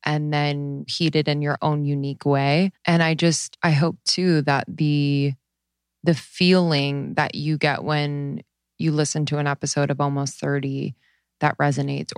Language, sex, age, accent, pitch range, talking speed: English, female, 20-39, American, 135-150 Hz, 160 wpm